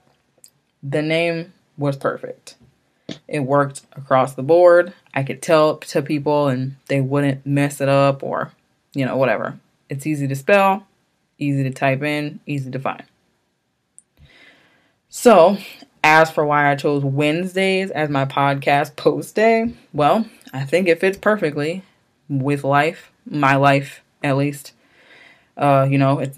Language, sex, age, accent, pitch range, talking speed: English, female, 20-39, American, 135-160 Hz, 145 wpm